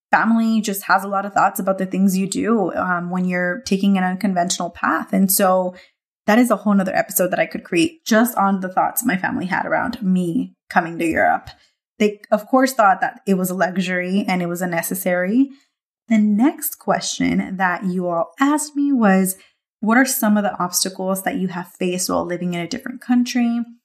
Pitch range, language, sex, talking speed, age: 180-230 Hz, English, female, 205 wpm, 20-39